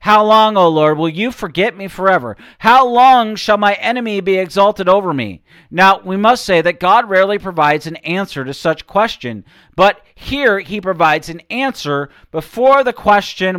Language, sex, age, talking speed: English, male, 40-59, 175 wpm